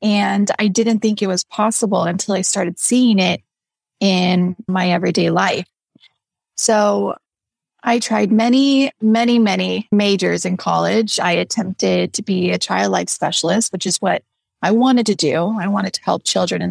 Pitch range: 185-225 Hz